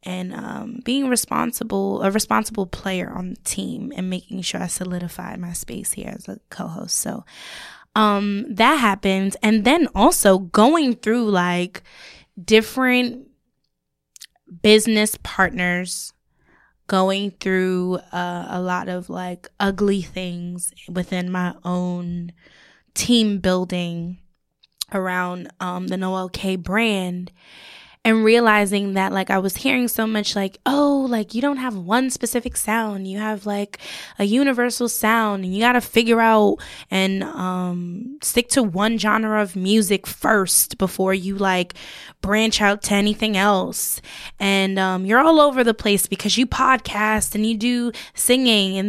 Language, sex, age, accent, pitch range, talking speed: English, female, 10-29, American, 185-230 Hz, 140 wpm